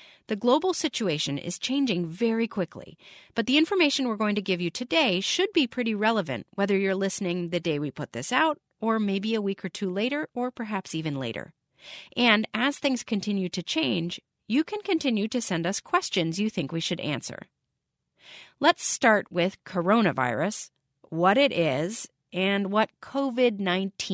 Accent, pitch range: American, 170-235 Hz